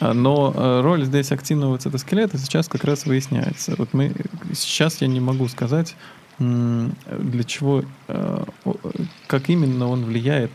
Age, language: 20-39, Russian